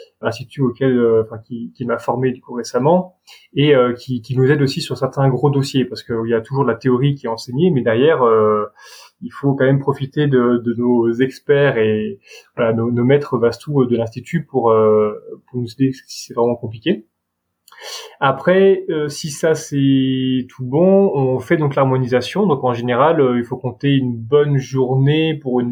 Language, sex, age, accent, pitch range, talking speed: French, male, 20-39, French, 120-145 Hz, 200 wpm